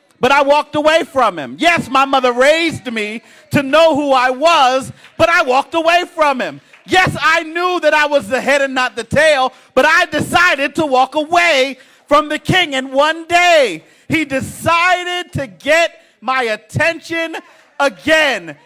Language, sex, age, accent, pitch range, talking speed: English, male, 40-59, American, 260-320 Hz, 170 wpm